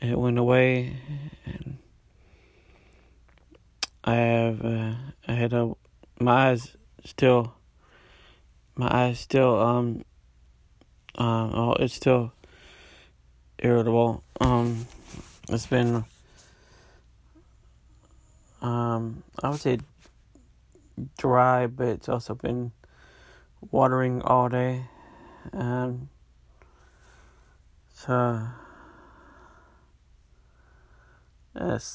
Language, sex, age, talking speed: English, male, 30-49, 75 wpm